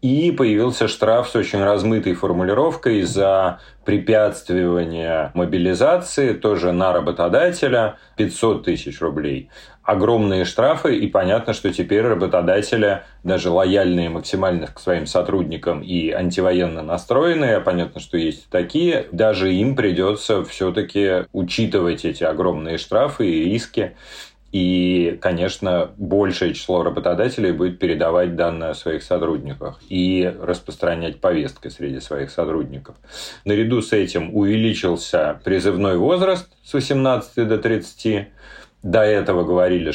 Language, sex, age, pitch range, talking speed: Russian, male, 30-49, 90-110 Hz, 115 wpm